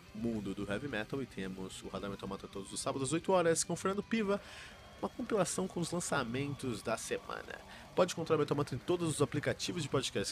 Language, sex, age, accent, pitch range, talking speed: Portuguese, male, 20-39, Brazilian, 105-160 Hz, 220 wpm